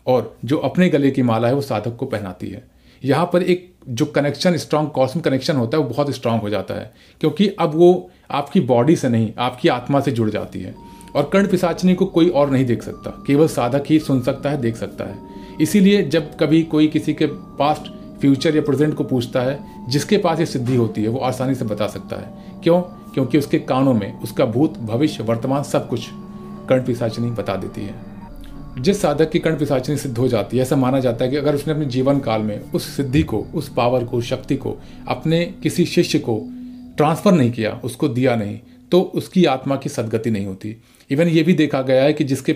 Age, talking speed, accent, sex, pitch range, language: 40-59, 215 wpm, native, male, 120-155 Hz, Hindi